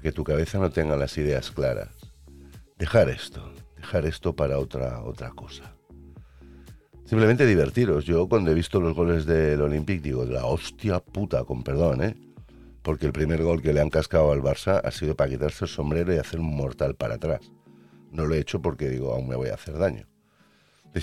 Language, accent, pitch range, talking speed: Spanish, Spanish, 70-95 Hz, 195 wpm